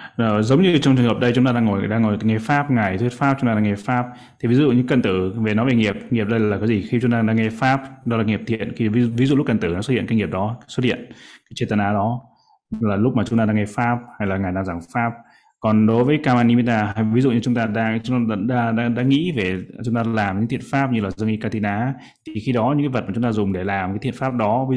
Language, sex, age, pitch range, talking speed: Vietnamese, male, 20-39, 105-120 Hz, 310 wpm